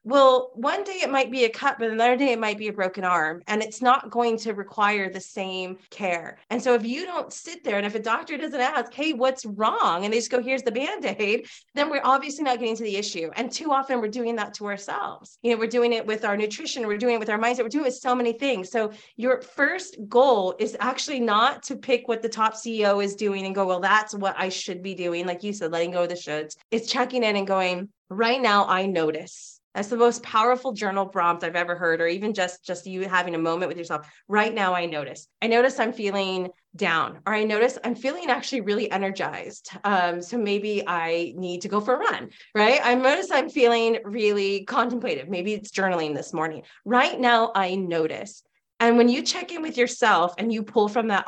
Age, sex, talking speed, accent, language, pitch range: 30-49, female, 235 wpm, American, English, 185-245 Hz